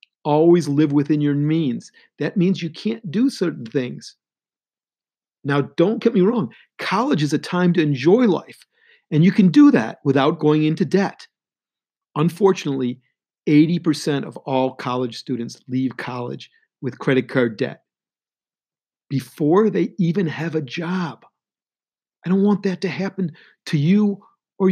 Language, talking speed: English, 145 wpm